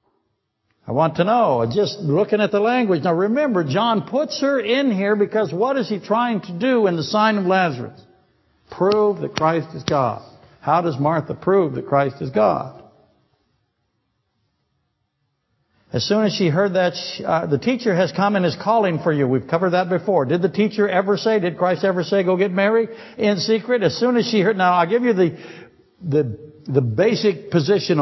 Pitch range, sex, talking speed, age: 130-195 Hz, male, 195 wpm, 60-79